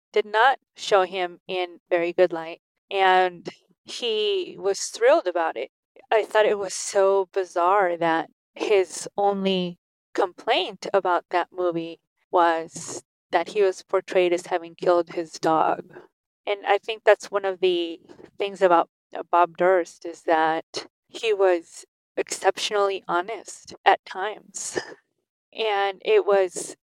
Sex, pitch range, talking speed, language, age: female, 180-215 Hz, 130 wpm, English, 20-39